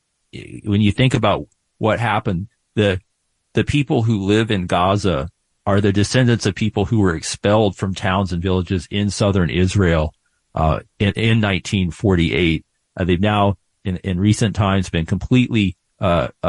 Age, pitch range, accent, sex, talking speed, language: 40-59, 100-115 Hz, American, male, 155 wpm, English